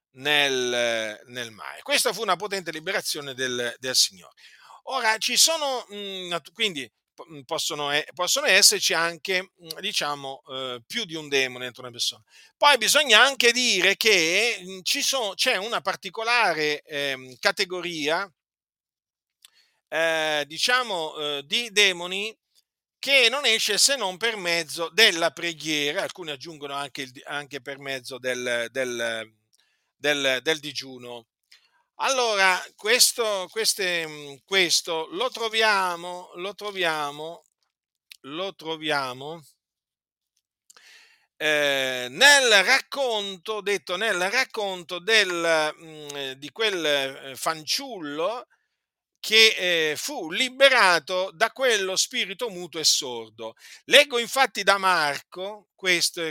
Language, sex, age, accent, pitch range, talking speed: Italian, male, 50-69, native, 145-210 Hz, 100 wpm